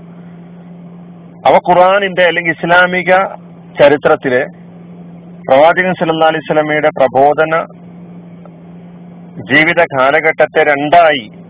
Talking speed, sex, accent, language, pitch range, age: 55 wpm, male, native, Malayalam, 155-175 Hz, 40-59